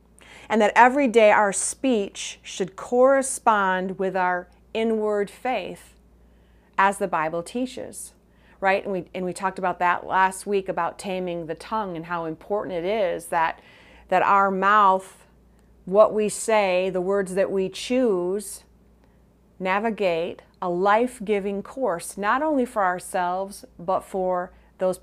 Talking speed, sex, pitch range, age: 140 wpm, female, 185-220 Hz, 40-59